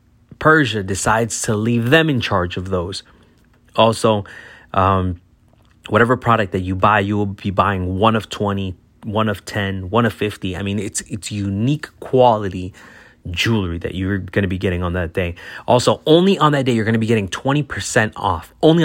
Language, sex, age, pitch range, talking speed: English, male, 30-49, 95-120 Hz, 185 wpm